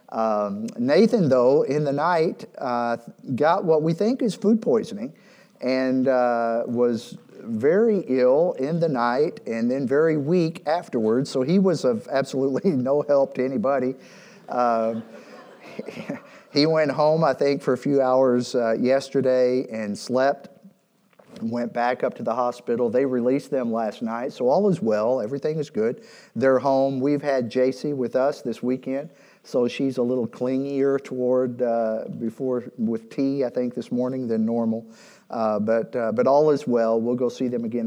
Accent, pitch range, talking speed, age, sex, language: American, 115-145 Hz, 170 wpm, 50-69, male, English